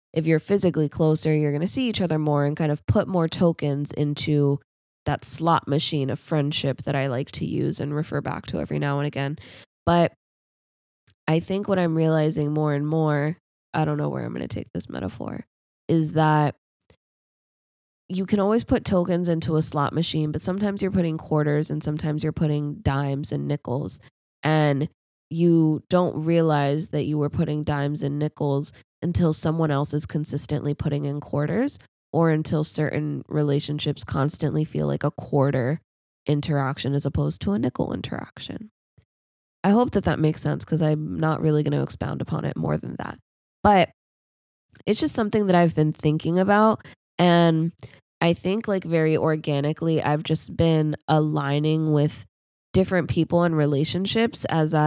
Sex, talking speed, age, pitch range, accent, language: female, 170 wpm, 20-39, 145-165 Hz, American, English